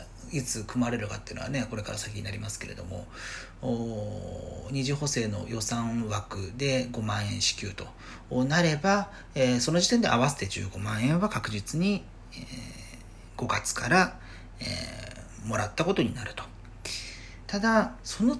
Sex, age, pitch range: male, 40-59, 105-165 Hz